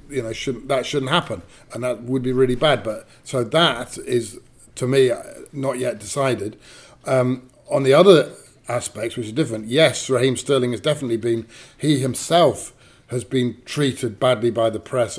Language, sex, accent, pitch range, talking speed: English, male, British, 115-135 Hz, 175 wpm